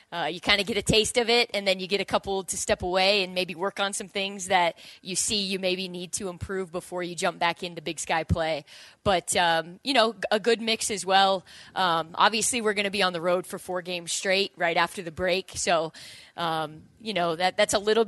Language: English